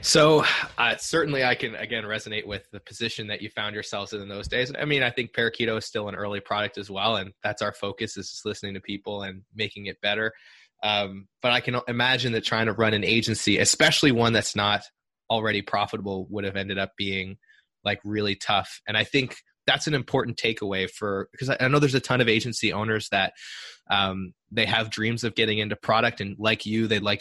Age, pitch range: 20-39, 100-115 Hz